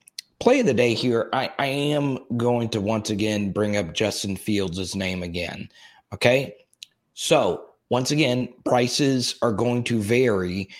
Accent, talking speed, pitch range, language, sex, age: American, 150 wpm, 100-125 Hz, English, male, 30-49